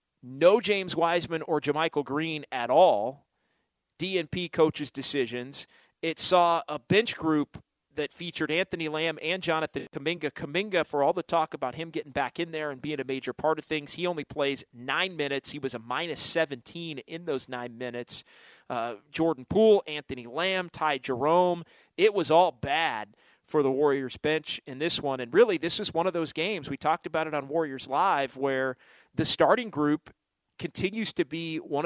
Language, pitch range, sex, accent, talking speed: English, 140-170 Hz, male, American, 180 wpm